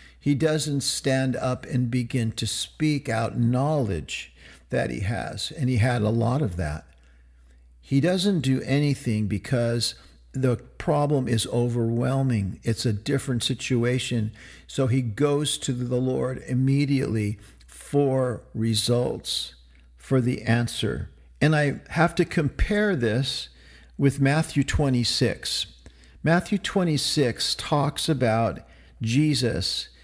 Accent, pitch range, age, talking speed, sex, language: American, 115-145 Hz, 50-69, 120 wpm, male, English